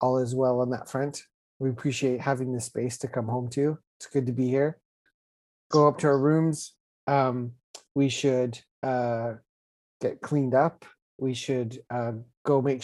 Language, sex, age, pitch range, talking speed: English, male, 30-49, 120-135 Hz, 175 wpm